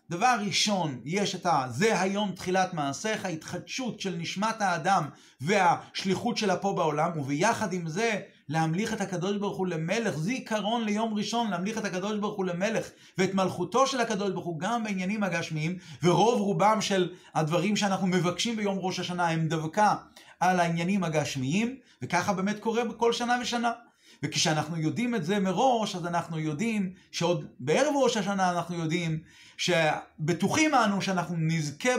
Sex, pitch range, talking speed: male, 170-220 Hz, 150 wpm